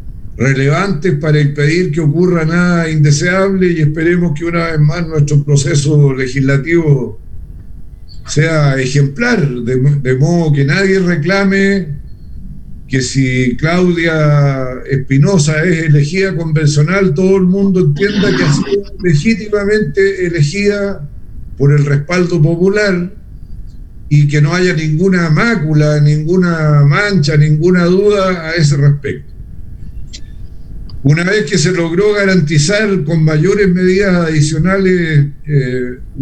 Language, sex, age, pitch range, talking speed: Spanish, male, 50-69, 140-185 Hz, 115 wpm